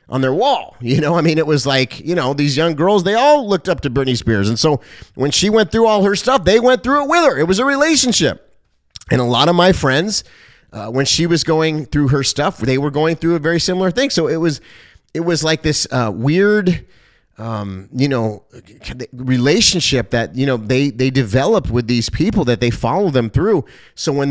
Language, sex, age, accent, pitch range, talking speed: English, male, 30-49, American, 130-175 Hz, 225 wpm